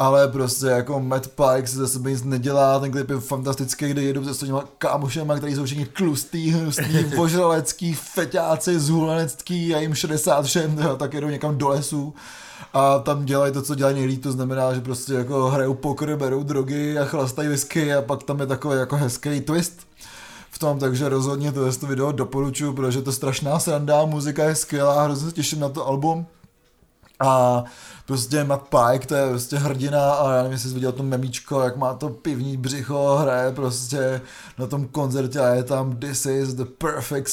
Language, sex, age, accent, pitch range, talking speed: Czech, male, 20-39, native, 130-150 Hz, 190 wpm